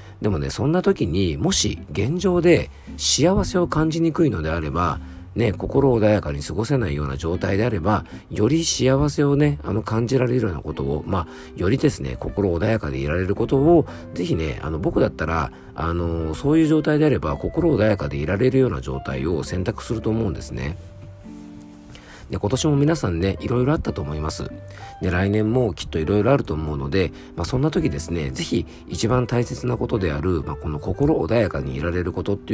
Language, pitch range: Japanese, 80-125 Hz